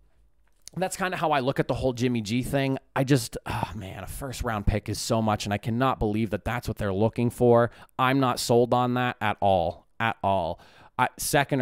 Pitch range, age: 105-135 Hz, 20-39